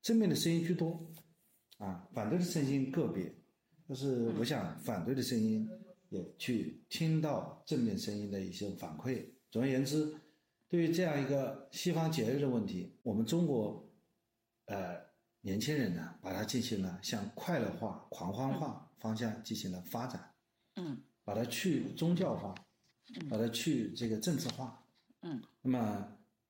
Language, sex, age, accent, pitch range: Chinese, male, 50-69, native, 110-160 Hz